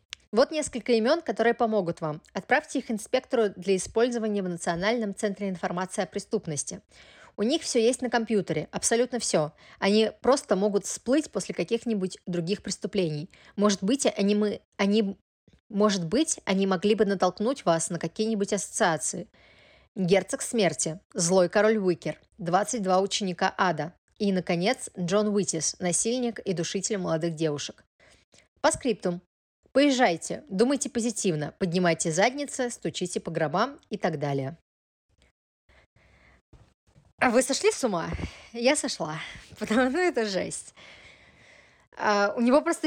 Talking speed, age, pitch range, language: 130 wpm, 20-39, 175-235 Hz, Russian